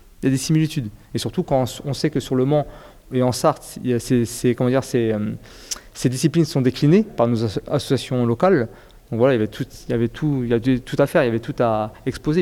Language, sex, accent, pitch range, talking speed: French, male, French, 120-145 Hz, 250 wpm